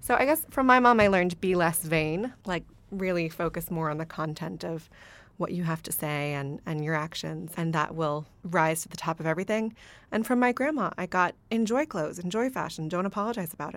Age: 20-39